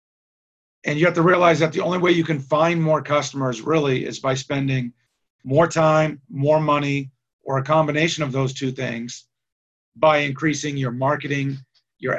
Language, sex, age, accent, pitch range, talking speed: English, male, 40-59, American, 130-155 Hz, 165 wpm